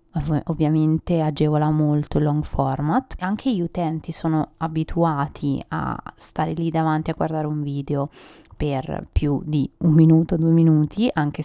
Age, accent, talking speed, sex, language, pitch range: 20-39, native, 145 wpm, female, Italian, 155-180 Hz